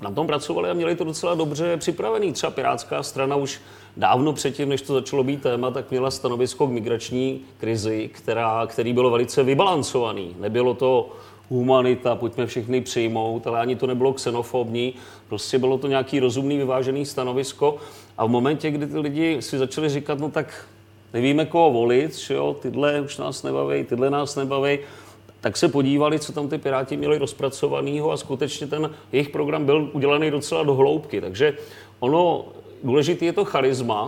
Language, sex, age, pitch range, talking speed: Czech, male, 40-59, 120-150 Hz, 170 wpm